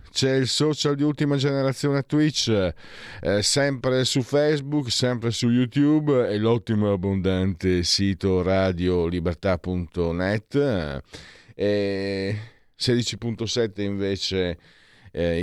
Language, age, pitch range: Italian, 50-69, 85-115 Hz